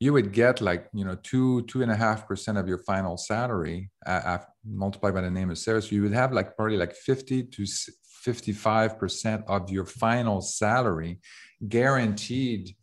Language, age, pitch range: English, 50-69, 90-110 Hz